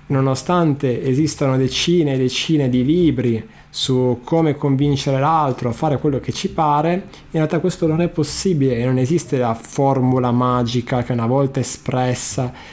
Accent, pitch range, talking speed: native, 120-155 Hz, 155 wpm